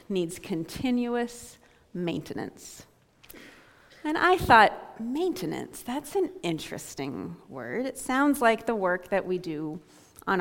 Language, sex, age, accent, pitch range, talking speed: English, female, 30-49, American, 185-245 Hz, 115 wpm